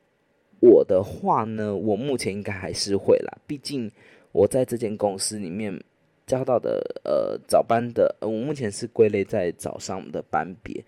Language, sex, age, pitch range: Chinese, male, 20-39, 100-120 Hz